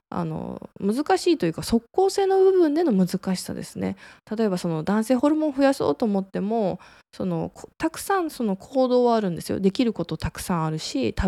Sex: female